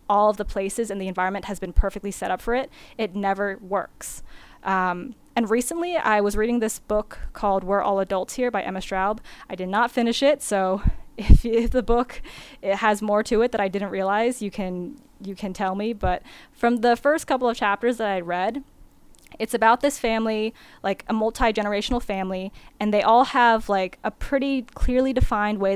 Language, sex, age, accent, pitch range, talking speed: English, female, 10-29, American, 190-235 Hz, 200 wpm